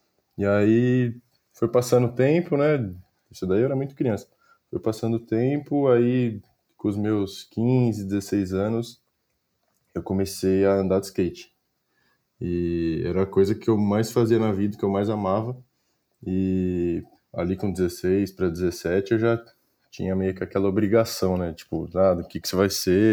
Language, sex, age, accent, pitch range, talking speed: Portuguese, male, 20-39, Brazilian, 90-115 Hz, 175 wpm